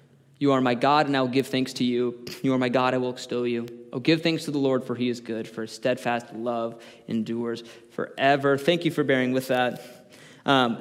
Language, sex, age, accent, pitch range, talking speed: English, male, 20-39, American, 125-145 Hz, 235 wpm